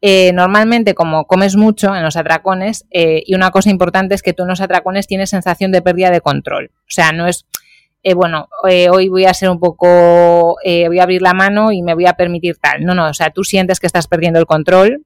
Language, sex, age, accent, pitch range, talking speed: Spanish, female, 20-39, Spanish, 170-205 Hz, 245 wpm